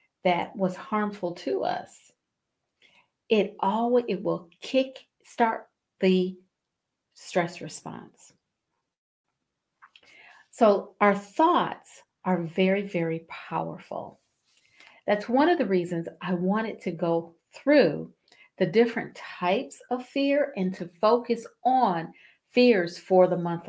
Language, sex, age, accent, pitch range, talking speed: English, female, 50-69, American, 180-240 Hz, 110 wpm